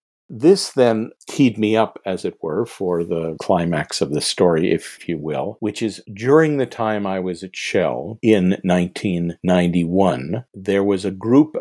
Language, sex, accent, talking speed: English, male, American, 165 wpm